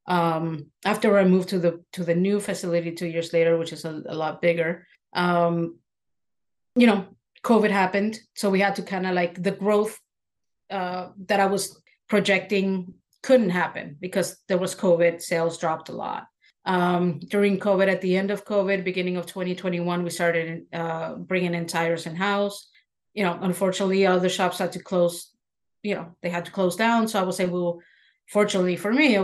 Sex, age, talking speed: female, 30-49, 190 wpm